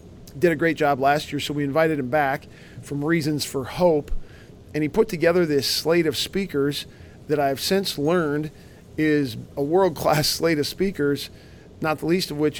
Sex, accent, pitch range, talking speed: male, American, 145-170 Hz, 180 wpm